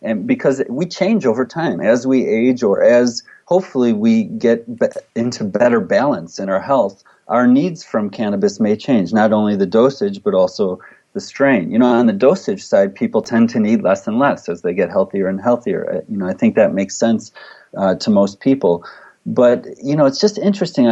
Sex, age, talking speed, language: male, 30-49, 200 wpm, English